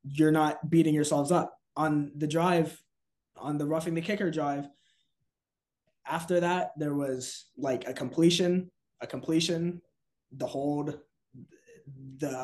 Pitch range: 150-180 Hz